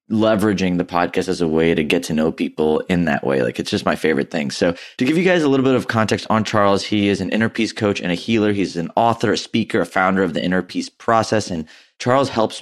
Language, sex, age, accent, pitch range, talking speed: English, male, 20-39, American, 85-105 Hz, 265 wpm